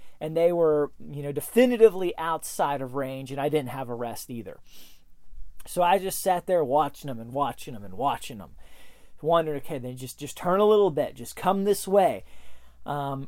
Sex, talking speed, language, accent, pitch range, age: male, 195 wpm, English, American, 155-225 Hz, 30-49